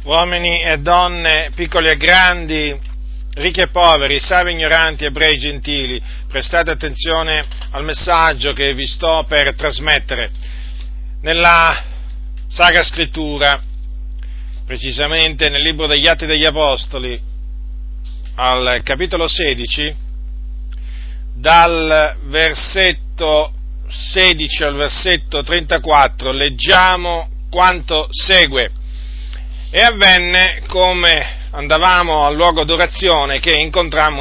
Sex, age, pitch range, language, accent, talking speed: male, 50-69, 135-175 Hz, Italian, native, 95 wpm